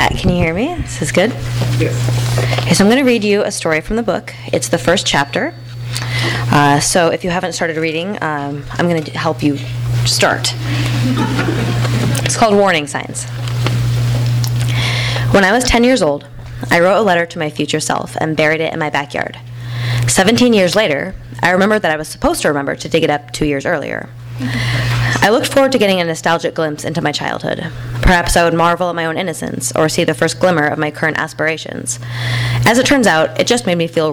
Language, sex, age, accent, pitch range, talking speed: English, female, 20-39, American, 120-175 Hz, 205 wpm